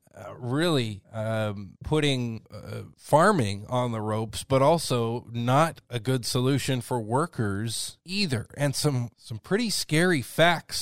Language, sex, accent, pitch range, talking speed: English, male, American, 110-135 Hz, 135 wpm